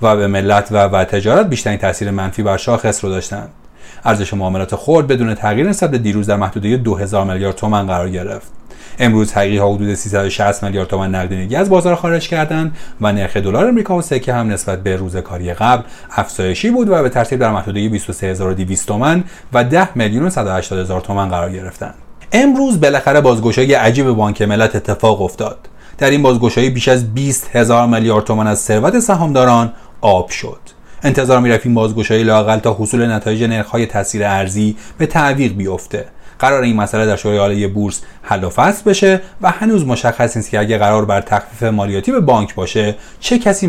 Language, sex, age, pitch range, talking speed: Persian, male, 30-49, 100-130 Hz, 175 wpm